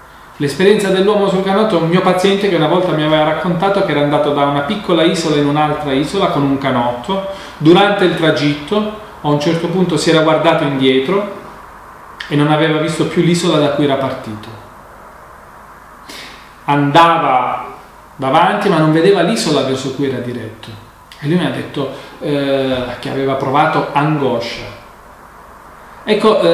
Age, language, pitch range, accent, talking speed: 40-59, Italian, 145-190 Hz, native, 155 wpm